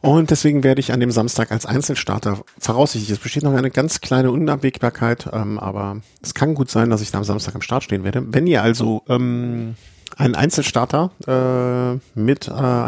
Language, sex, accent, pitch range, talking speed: German, male, German, 110-135 Hz, 190 wpm